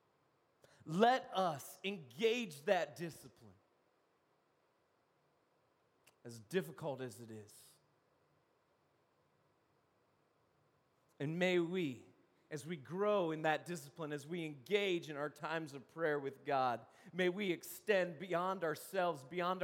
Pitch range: 120-180 Hz